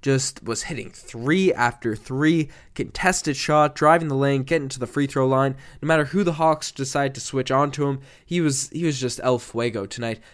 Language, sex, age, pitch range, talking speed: English, male, 10-29, 125-155 Hz, 205 wpm